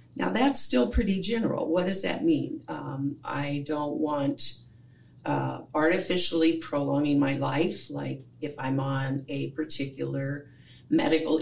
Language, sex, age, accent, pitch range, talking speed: English, female, 50-69, American, 135-180 Hz, 130 wpm